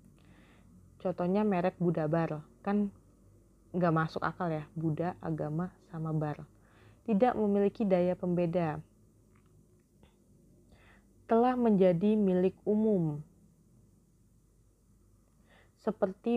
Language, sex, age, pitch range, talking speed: Indonesian, female, 20-39, 165-205 Hz, 75 wpm